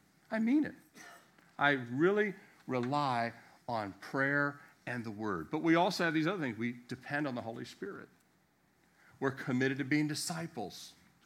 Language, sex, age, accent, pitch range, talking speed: English, male, 50-69, American, 125-170 Hz, 160 wpm